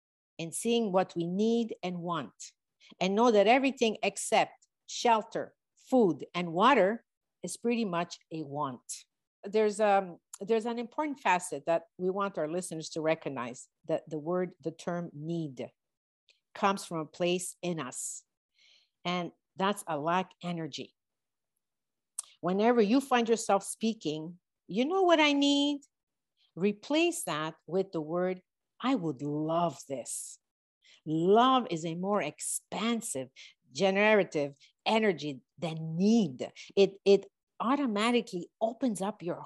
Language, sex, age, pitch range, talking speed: English, female, 50-69, 165-225 Hz, 130 wpm